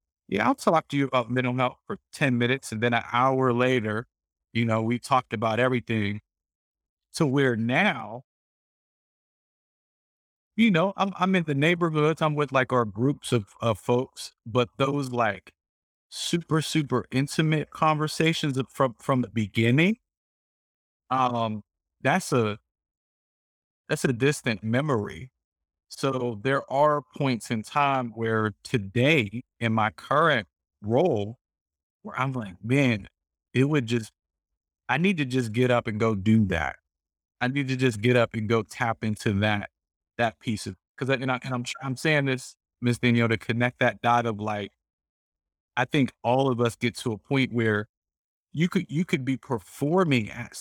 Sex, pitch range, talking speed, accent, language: male, 105-135 Hz, 160 wpm, American, English